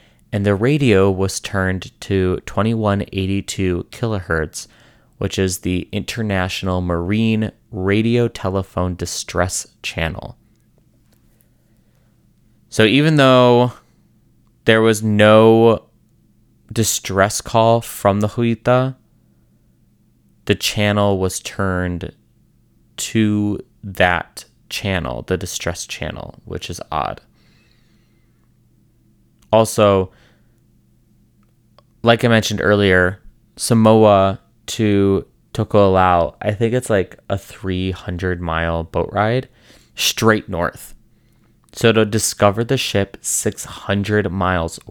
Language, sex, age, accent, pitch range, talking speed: English, male, 20-39, American, 95-115 Hz, 90 wpm